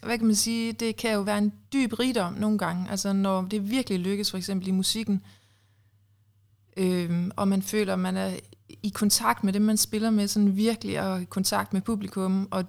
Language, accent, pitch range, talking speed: Danish, native, 160-215 Hz, 210 wpm